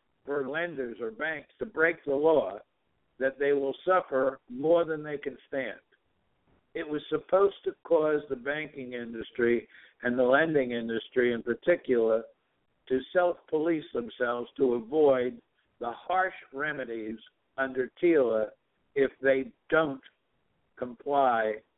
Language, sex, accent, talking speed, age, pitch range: English, male, American, 125 wpm, 60-79, 130-170 Hz